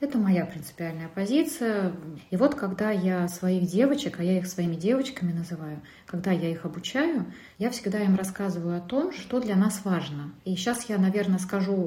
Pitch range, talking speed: 175-215 Hz, 175 wpm